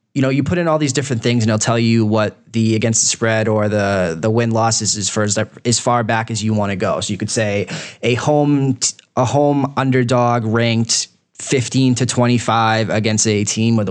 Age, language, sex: 20-39, English, male